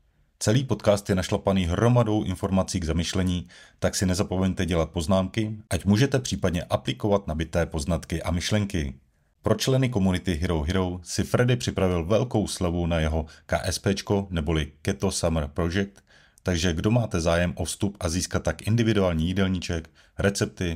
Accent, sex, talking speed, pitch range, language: native, male, 145 wpm, 85-100 Hz, Czech